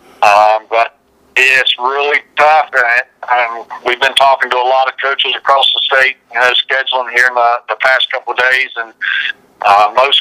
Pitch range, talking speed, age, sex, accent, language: 125-145 Hz, 190 wpm, 50-69, male, American, English